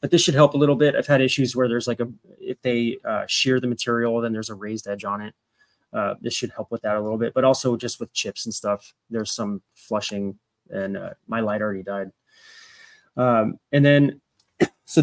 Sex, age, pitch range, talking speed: male, 20-39, 110-130 Hz, 225 wpm